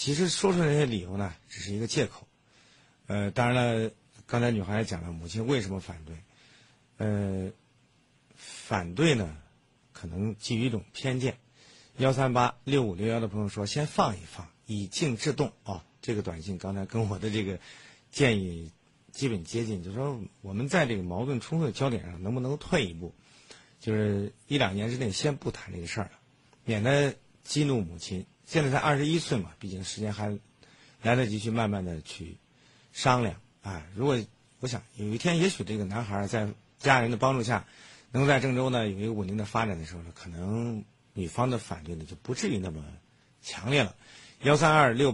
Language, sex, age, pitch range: Chinese, male, 50-69, 100-135 Hz